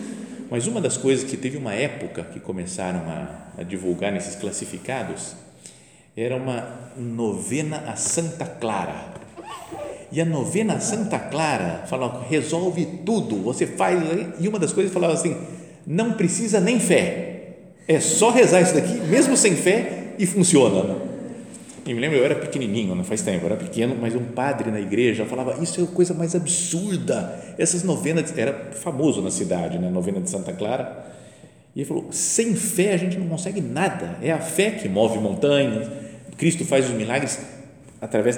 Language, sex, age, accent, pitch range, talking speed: Portuguese, male, 50-69, Brazilian, 115-180 Hz, 165 wpm